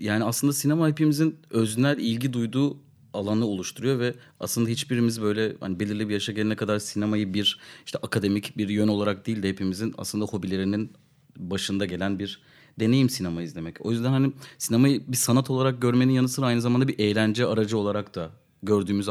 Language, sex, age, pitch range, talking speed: Turkish, male, 30-49, 105-125 Hz, 175 wpm